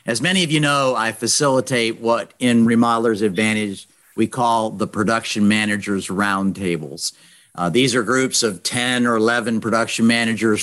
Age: 50-69